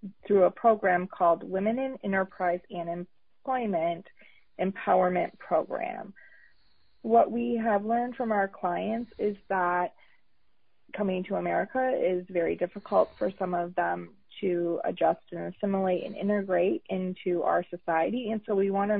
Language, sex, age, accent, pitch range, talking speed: English, female, 30-49, American, 180-235 Hz, 140 wpm